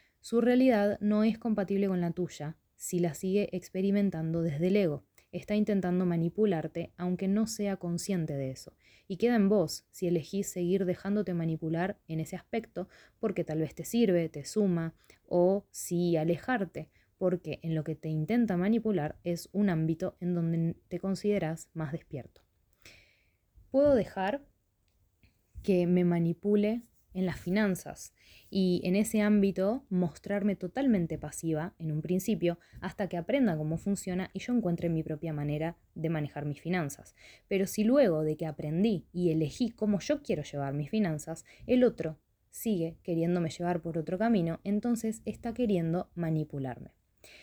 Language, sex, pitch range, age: Spanish, female, 160-205 Hz, 20-39